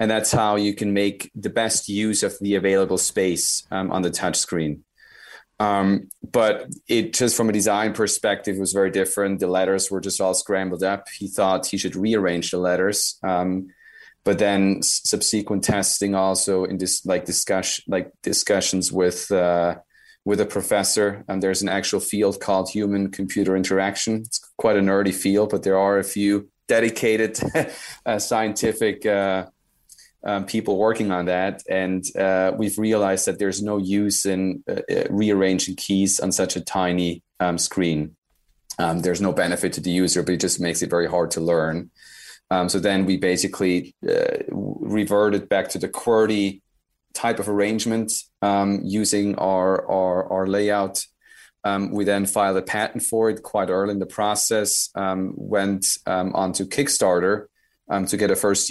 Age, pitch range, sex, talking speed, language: 30-49, 95-105 Hz, male, 170 wpm, English